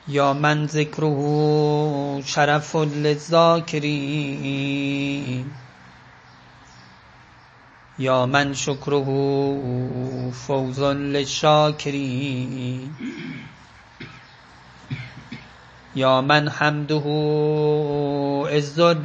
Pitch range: 130-150 Hz